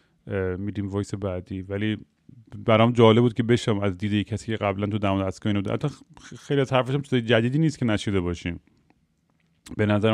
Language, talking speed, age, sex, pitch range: Persian, 170 wpm, 30-49, male, 100-115 Hz